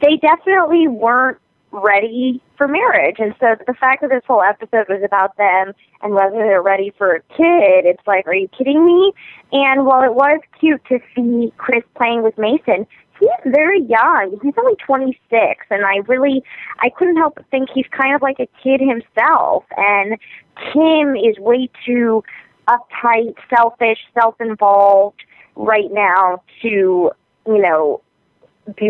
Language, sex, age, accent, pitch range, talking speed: English, female, 20-39, American, 195-260 Hz, 160 wpm